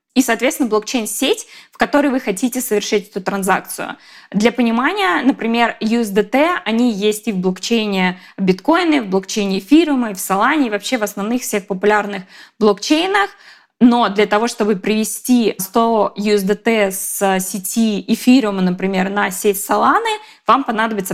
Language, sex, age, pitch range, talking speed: Russian, female, 20-39, 200-250 Hz, 140 wpm